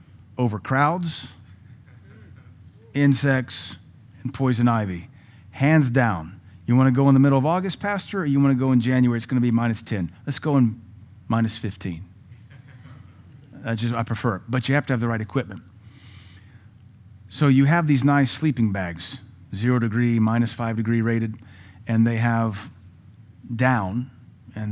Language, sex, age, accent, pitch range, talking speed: English, male, 40-59, American, 105-130 Hz, 160 wpm